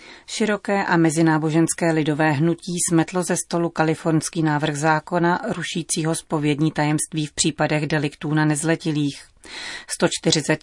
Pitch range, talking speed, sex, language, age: 150-175 Hz, 115 wpm, female, Czech, 30-49